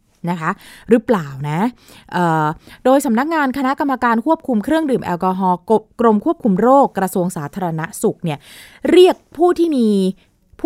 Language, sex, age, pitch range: Thai, female, 20-39, 175-265 Hz